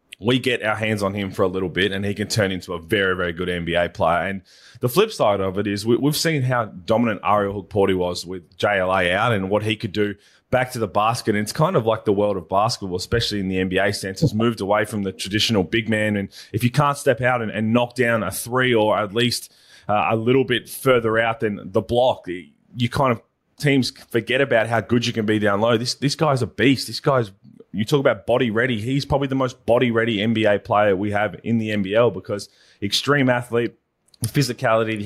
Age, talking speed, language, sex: 20-39, 235 wpm, English, male